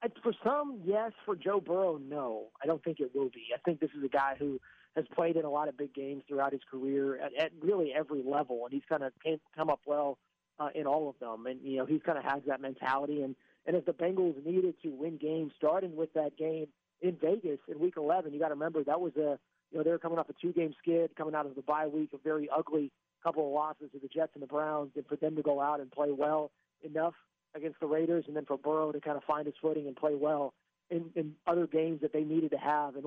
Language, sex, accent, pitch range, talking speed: English, male, American, 145-165 Hz, 265 wpm